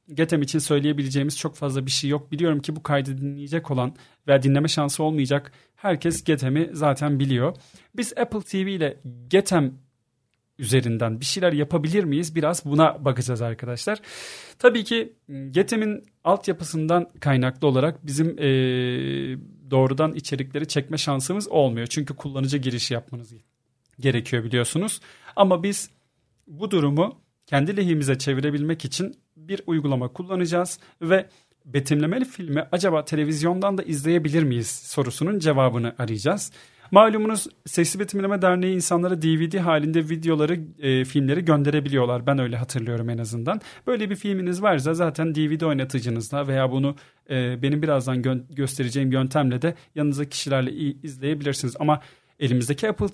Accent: native